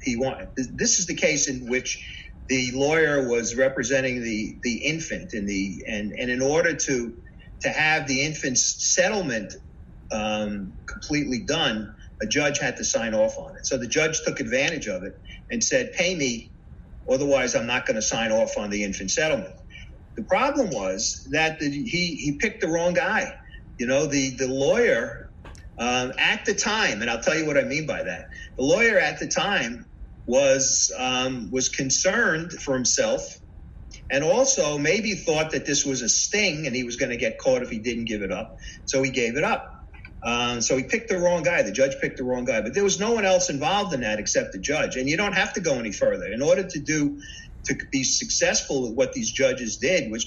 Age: 40-59